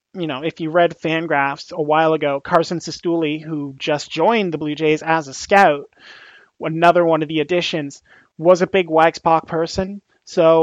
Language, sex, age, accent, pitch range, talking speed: English, male, 30-49, American, 155-185 Hz, 175 wpm